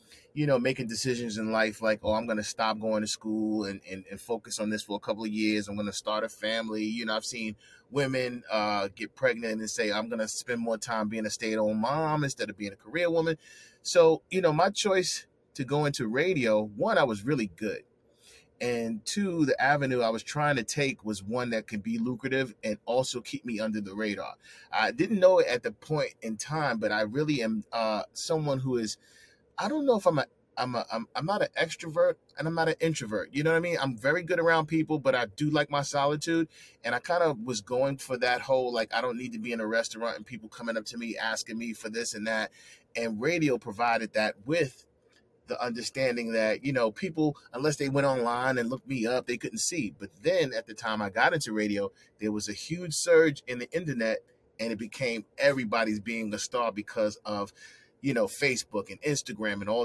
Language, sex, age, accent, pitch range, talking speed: English, male, 30-49, American, 110-145 Hz, 230 wpm